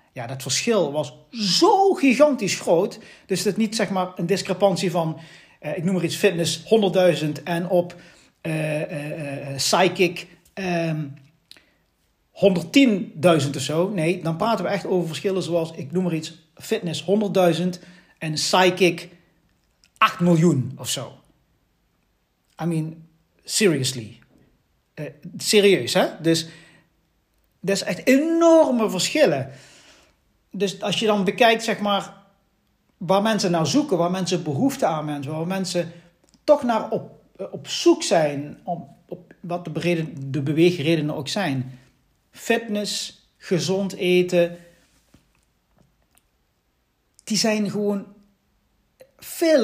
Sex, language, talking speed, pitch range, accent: male, Dutch, 125 wpm, 160-200 Hz, Dutch